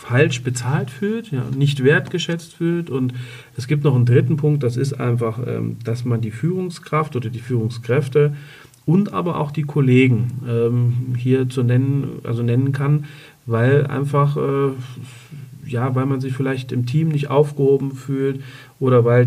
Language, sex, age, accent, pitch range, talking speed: German, male, 40-59, German, 125-140 Hz, 150 wpm